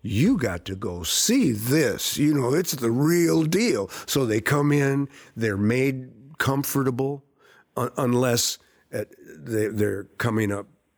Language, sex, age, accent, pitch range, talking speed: English, male, 50-69, American, 100-120 Hz, 125 wpm